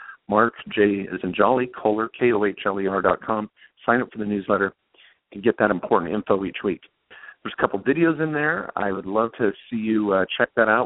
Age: 50-69